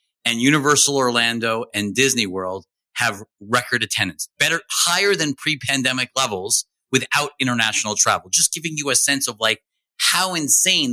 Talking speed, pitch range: 145 wpm, 110-140 Hz